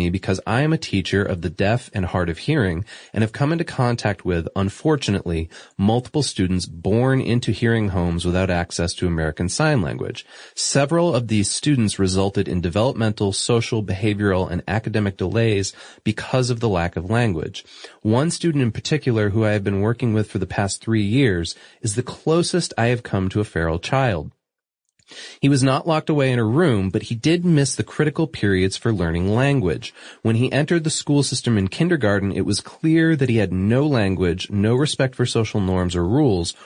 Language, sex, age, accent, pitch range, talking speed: English, male, 30-49, American, 95-130 Hz, 190 wpm